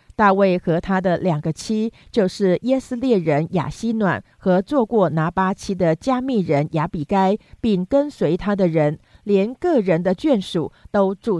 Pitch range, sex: 170-215 Hz, female